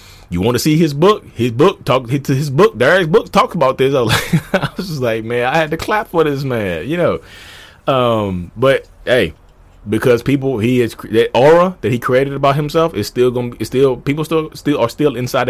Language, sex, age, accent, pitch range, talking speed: English, male, 20-39, American, 110-160 Hz, 230 wpm